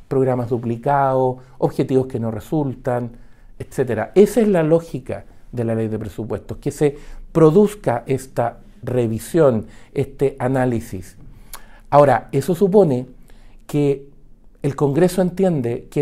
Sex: male